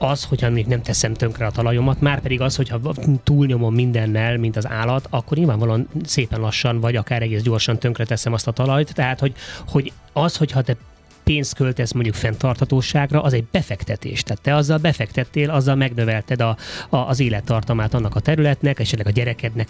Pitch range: 115-140 Hz